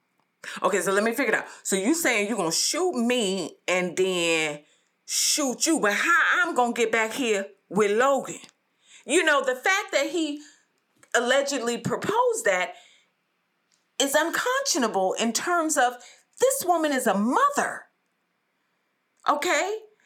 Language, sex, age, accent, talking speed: English, female, 40-59, American, 145 wpm